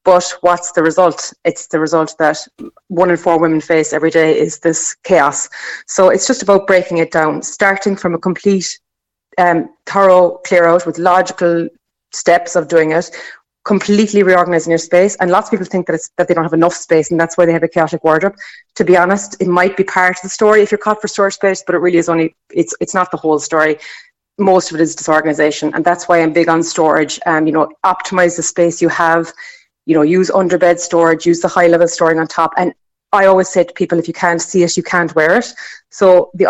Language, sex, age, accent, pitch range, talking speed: English, female, 30-49, Irish, 165-185 Hz, 230 wpm